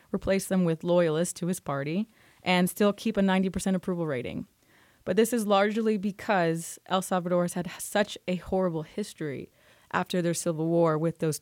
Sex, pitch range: female, 165-195 Hz